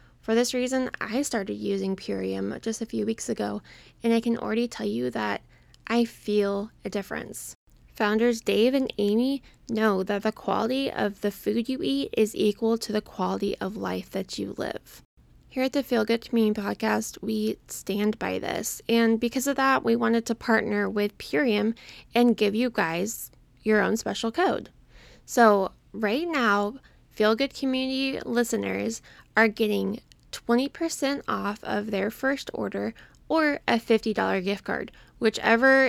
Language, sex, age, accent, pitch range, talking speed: English, female, 10-29, American, 205-240 Hz, 160 wpm